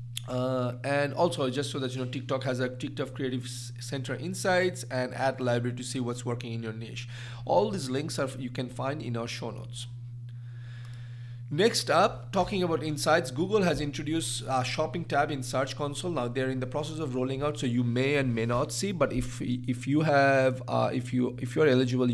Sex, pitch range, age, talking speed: male, 120-135 Hz, 40-59, 210 wpm